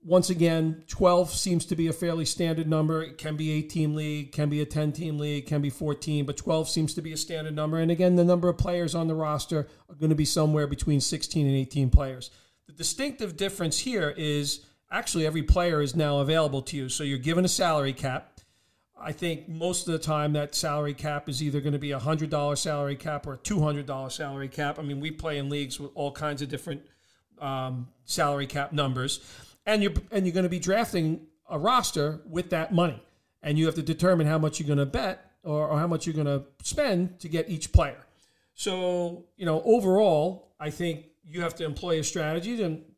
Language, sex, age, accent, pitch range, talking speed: English, male, 40-59, American, 145-170 Hz, 220 wpm